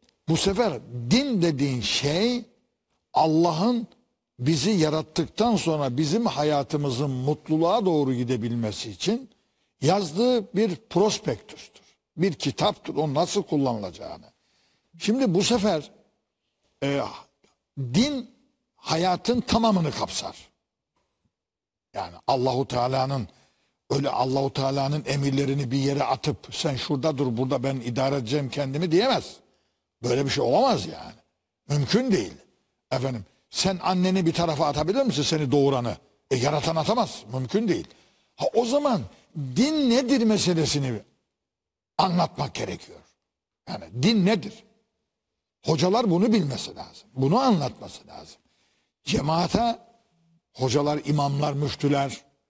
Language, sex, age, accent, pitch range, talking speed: Turkish, male, 60-79, native, 140-215 Hz, 105 wpm